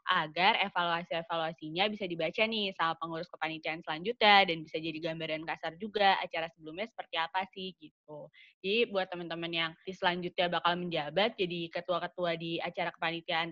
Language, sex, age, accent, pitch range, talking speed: Indonesian, female, 20-39, native, 170-195 Hz, 145 wpm